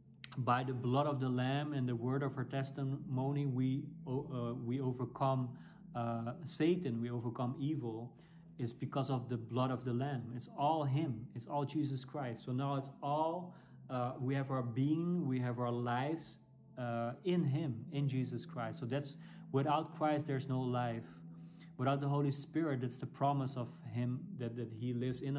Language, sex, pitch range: English, male, 125-150 Hz